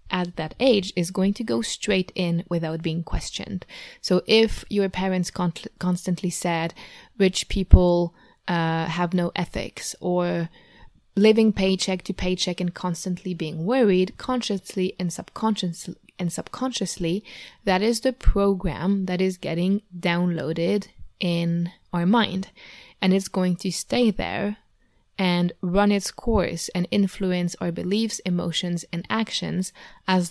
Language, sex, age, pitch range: English, female, 20-39, 175-205 Hz